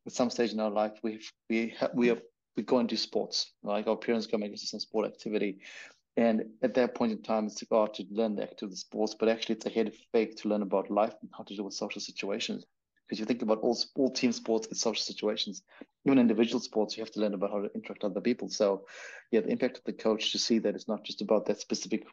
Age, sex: 30-49, male